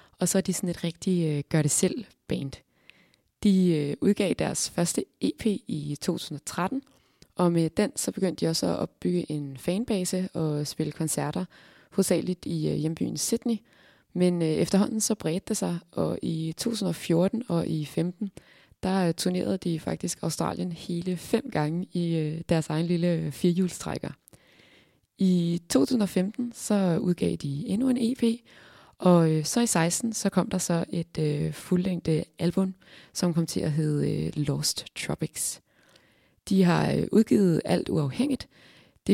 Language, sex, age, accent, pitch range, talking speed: Danish, female, 20-39, native, 160-190 Hz, 150 wpm